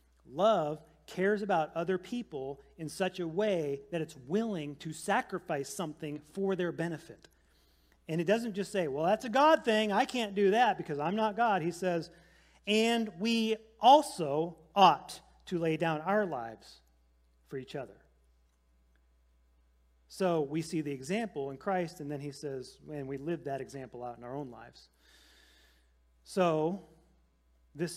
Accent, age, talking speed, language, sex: American, 40-59, 155 wpm, English, male